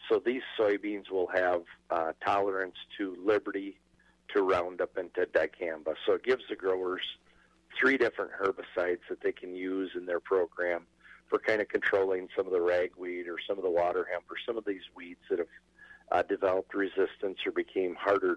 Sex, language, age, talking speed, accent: male, English, 50-69, 180 wpm, American